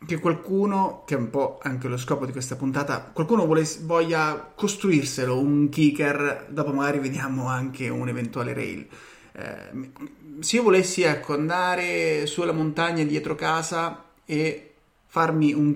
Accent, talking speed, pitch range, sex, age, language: native, 135 wpm, 130-155 Hz, male, 30-49, Italian